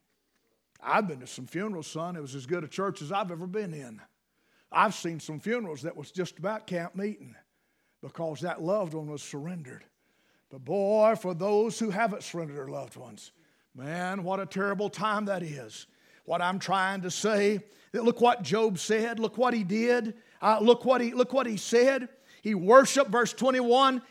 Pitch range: 175-245 Hz